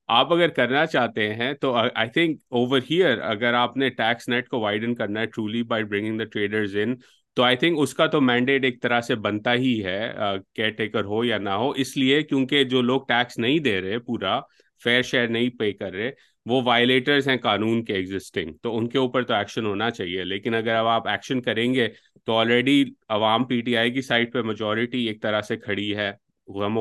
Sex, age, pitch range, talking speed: male, 30-49, 105-125 Hz, 210 wpm